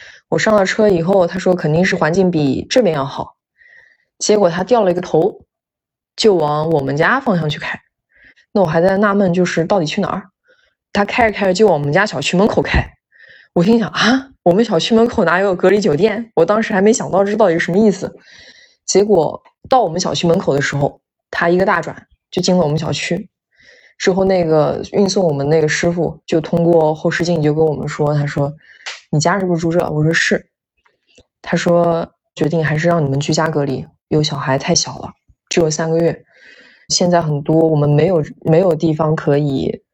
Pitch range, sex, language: 150-190 Hz, female, Chinese